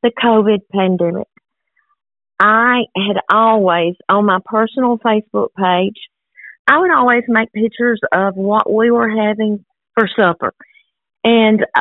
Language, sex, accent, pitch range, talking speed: English, female, American, 200-240 Hz, 120 wpm